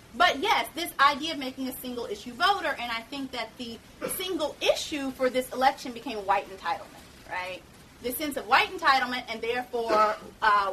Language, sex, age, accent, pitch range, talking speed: English, female, 30-49, American, 200-275 Hz, 175 wpm